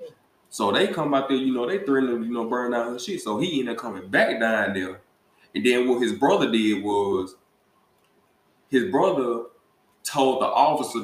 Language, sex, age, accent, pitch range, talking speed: English, male, 20-39, American, 105-130 Hz, 195 wpm